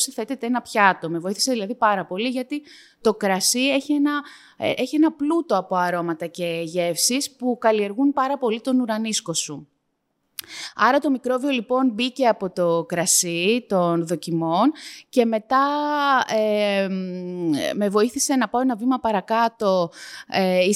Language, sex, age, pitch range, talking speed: Greek, female, 20-39, 185-240 Hz, 135 wpm